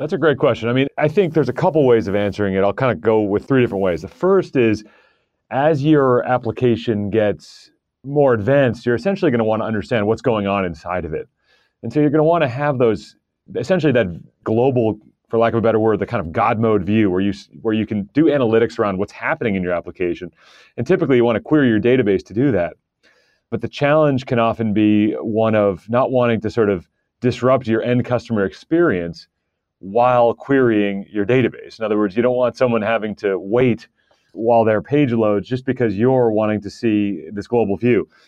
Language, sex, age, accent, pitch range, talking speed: English, male, 30-49, American, 105-130 Hz, 215 wpm